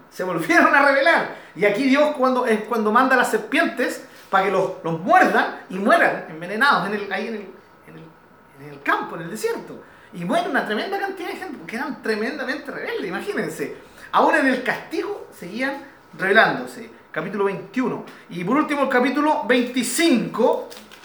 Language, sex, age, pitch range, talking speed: Spanish, male, 40-59, 185-310 Hz, 175 wpm